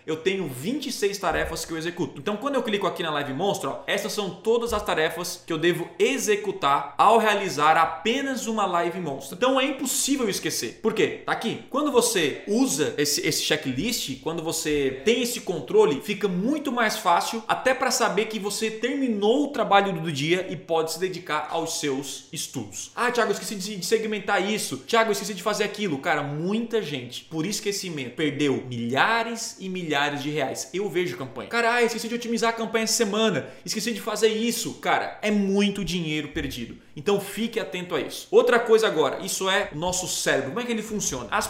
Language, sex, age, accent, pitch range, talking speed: Portuguese, male, 20-39, Brazilian, 160-225 Hz, 190 wpm